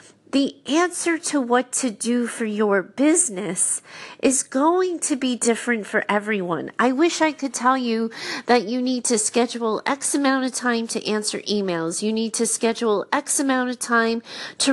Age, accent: 30-49, American